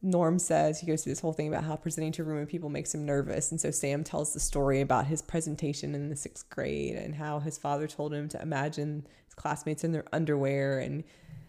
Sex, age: female, 20-39